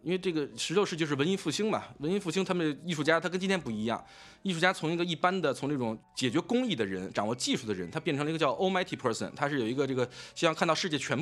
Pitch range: 120-180 Hz